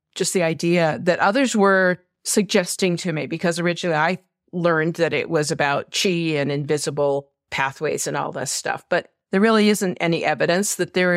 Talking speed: 175 wpm